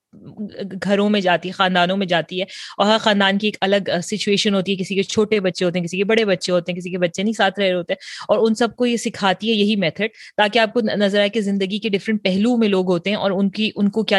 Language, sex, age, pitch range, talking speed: Urdu, female, 30-49, 190-225 Hz, 275 wpm